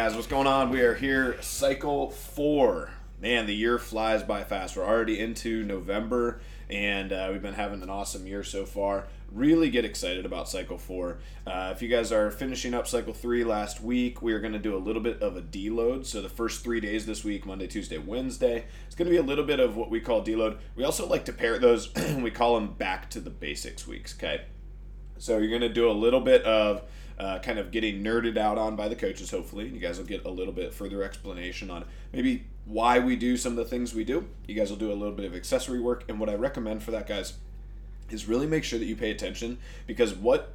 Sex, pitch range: male, 100-125 Hz